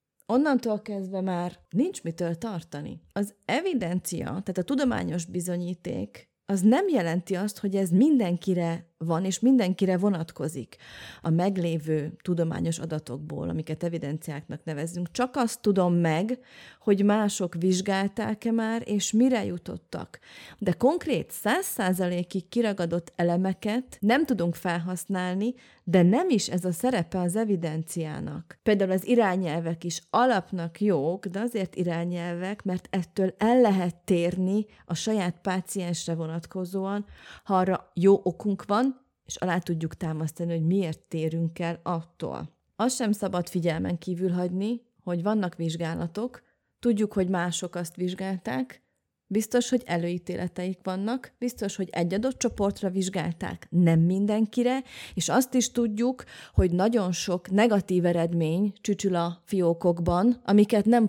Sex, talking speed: female, 125 wpm